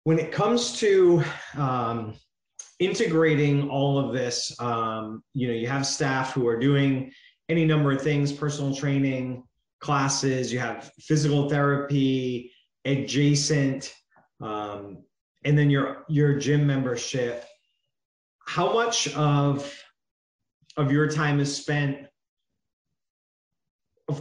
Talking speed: 115 wpm